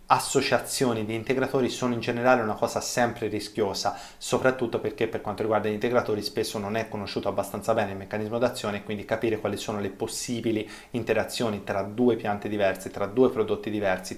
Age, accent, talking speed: 20-39, native, 180 wpm